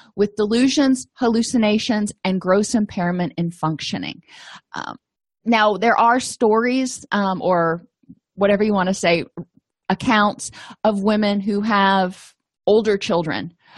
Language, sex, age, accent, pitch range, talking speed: English, female, 30-49, American, 175-225 Hz, 120 wpm